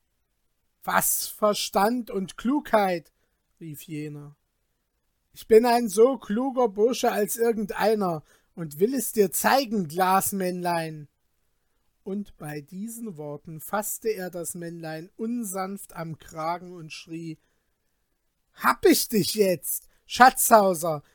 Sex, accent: male, German